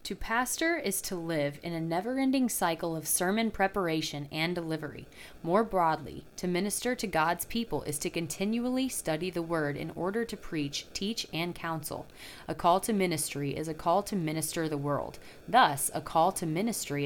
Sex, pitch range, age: female, 155-200 Hz, 30-49